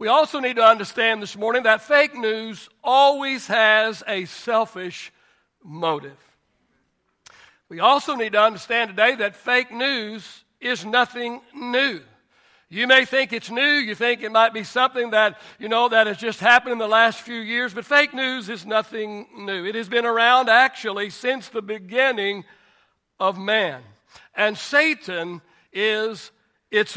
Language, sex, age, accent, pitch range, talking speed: English, male, 60-79, American, 195-240 Hz, 155 wpm